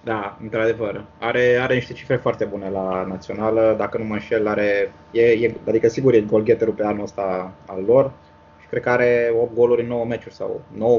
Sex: male